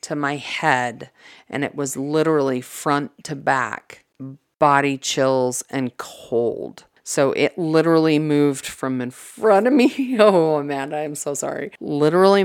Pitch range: 135-150 Hz